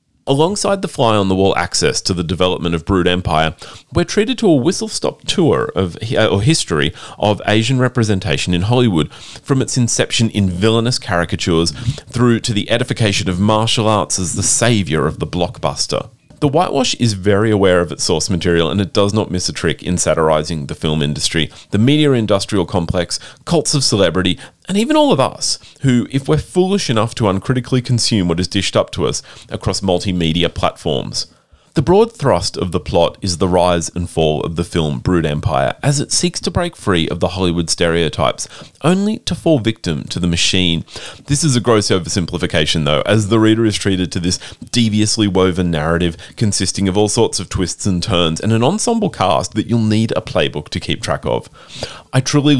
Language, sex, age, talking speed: English, male, 30-49, 190 wpm